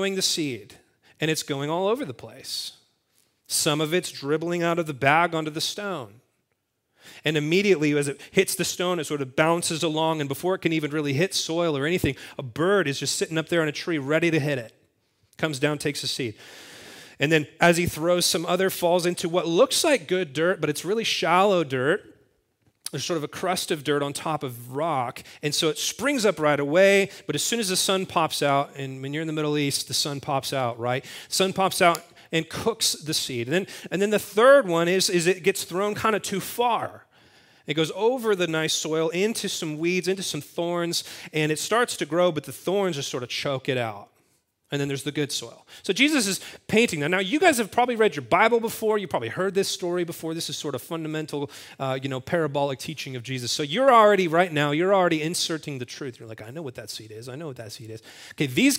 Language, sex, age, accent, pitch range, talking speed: English, male, 30-49, American, 145-185 Hz, 235 wpm